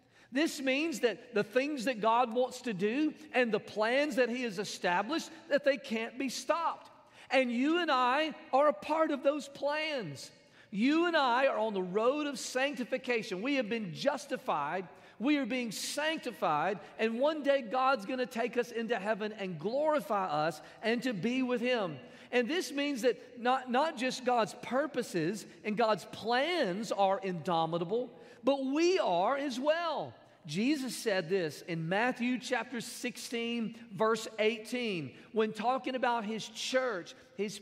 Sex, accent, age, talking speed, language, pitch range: male, American, 40-59, 160 wpm, English, 215-270 Hz